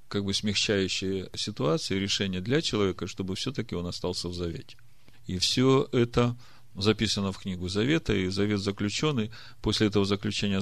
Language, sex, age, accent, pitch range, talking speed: Russian, male, 40-59, native, 95-115 Hz, 145 wpm